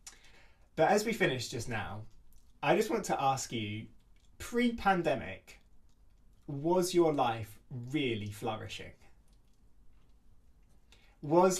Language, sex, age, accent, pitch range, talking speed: English, male, 20-39, British, 115-145 Hz, 100 wpm